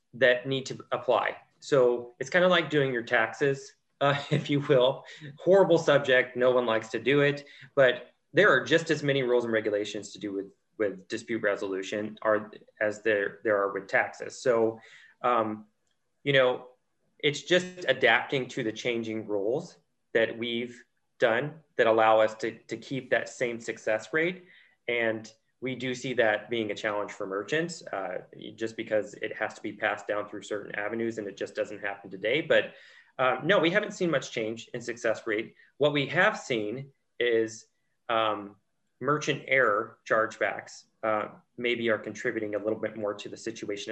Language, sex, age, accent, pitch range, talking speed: English, male, 20-39, American, 110-140 Hz, 175 wpm